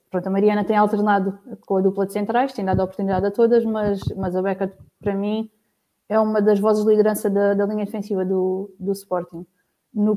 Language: Portuguese